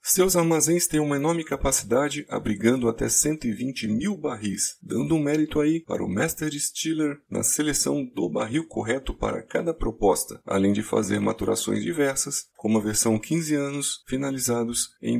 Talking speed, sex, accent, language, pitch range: 160 wpm, male, Brazilian, Portuguese, 115-155 Hz